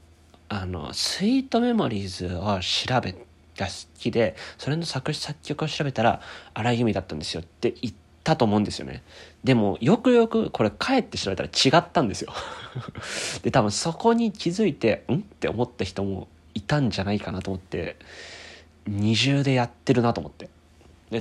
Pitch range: 90-135 Hz